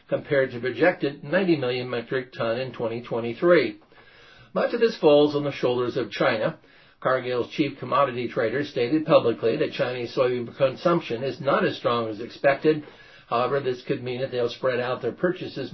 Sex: male